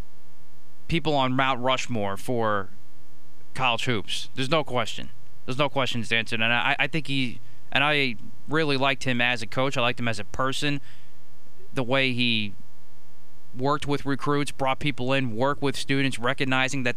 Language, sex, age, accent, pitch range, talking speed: English, male, 20-39, American, 115-135 Hz, 165 wpm